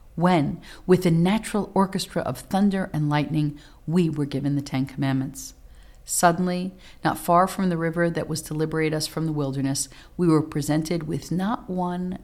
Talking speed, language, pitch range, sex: 170 wpm, English, 145-180 Hz, female